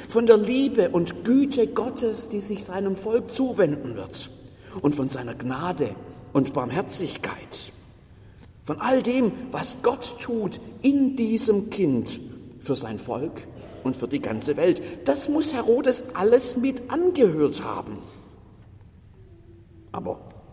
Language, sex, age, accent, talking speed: German, male, 50-69, German, 125 wpm